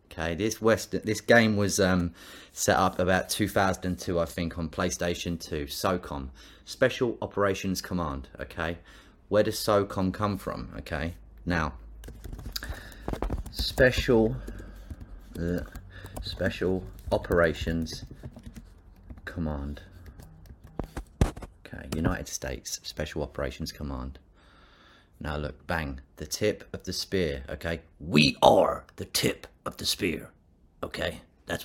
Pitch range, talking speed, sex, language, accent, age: 80-105 Hz, 110 wpm, male, English, British, 30-49